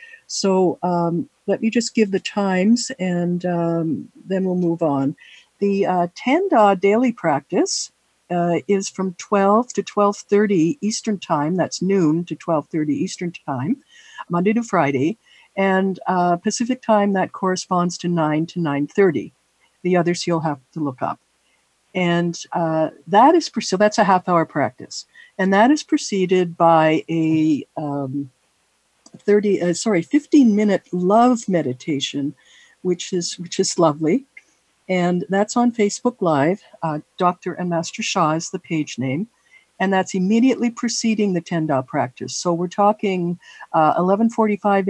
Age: 60-79